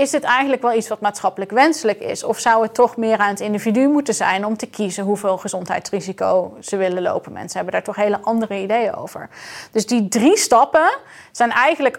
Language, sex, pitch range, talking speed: Dutch, female, 210-245 Hz, 205 wpm